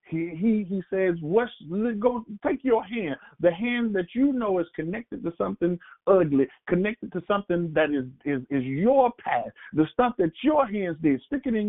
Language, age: English, 50-69